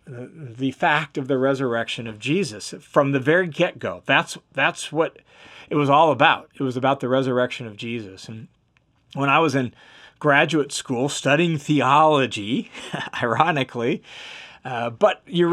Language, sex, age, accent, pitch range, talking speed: English, male, 40-59, American, 130-170 Hz, 145 wpm